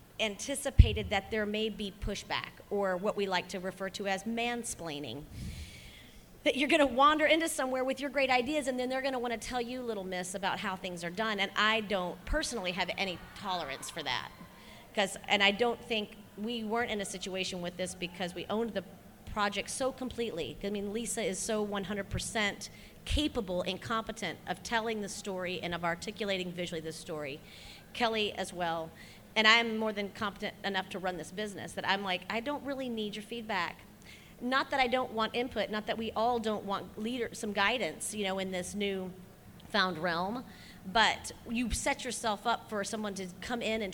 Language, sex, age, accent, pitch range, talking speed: English, female, 40-59, American, 190-240 Hz, 195 wpm